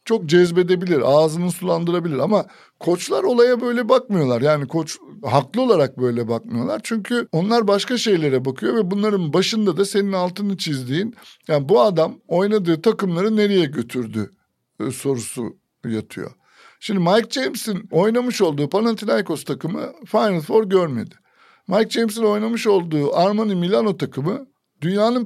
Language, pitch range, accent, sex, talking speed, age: Turkish, 150-215 Hz, native, male, 130 wpm, 60-79